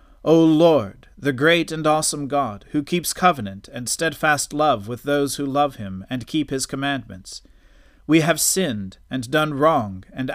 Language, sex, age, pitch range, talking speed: English, male, 40-59, 105-150 Hz, 170 wpm